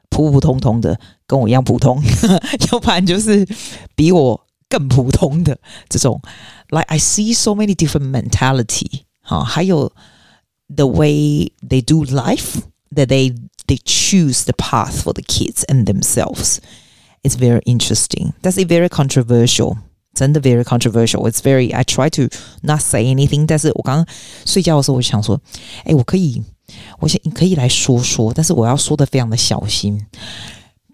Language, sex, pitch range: Chinese, female, 115-150 Hz